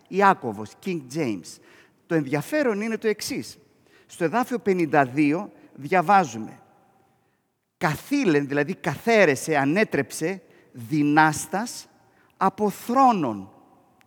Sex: male